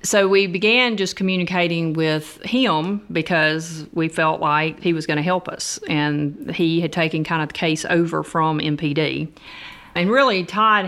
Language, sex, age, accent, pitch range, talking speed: English, female, 40-59, American, 155-175 Hz, 165 wpm